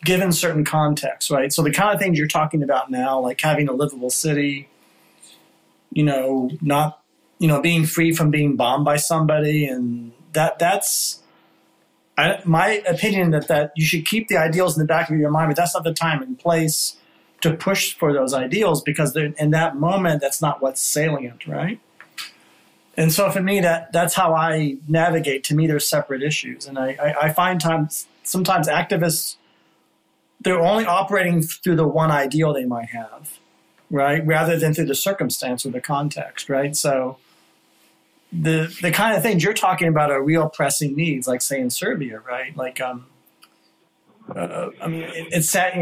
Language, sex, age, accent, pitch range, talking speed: English, male, 30-49, American, 140-170 Hz, 180 wpm